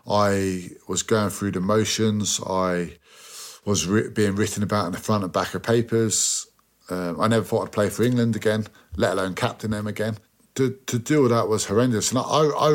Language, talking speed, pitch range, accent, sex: English, 200 wpm, 100-120 Hz, British, male